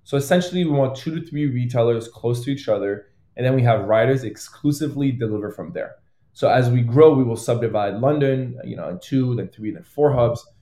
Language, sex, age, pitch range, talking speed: English, male, 20-39, 110-140 Hz, 215 wpm